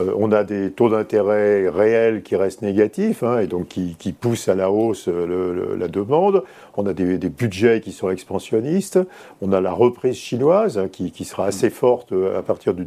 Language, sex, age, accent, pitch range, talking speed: French, male, 50-69, French, 95-120 Hz, 195 wpm